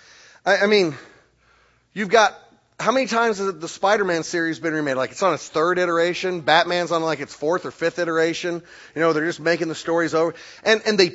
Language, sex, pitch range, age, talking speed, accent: English, male, 140-185 Hz, 30-49, 210 wpm, American